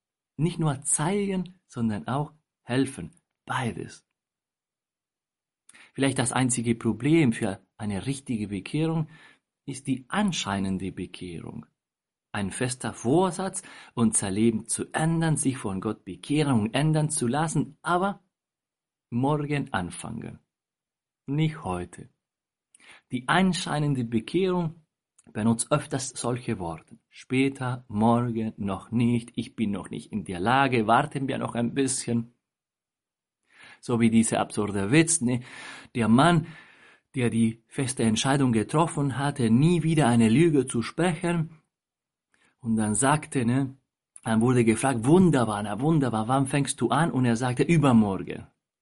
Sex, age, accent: male, 50-69, German